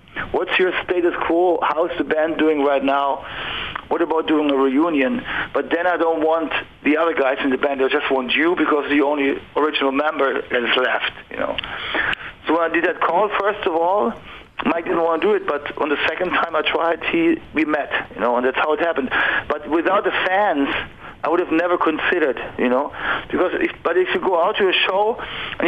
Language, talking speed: Hebrew, 230 wpm